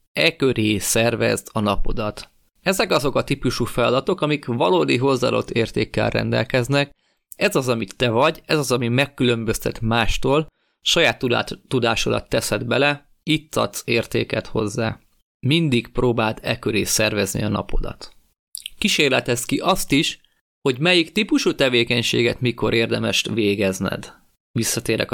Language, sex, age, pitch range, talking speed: Hungarian, male, 30-49, 105-130 Hz, 125 wpm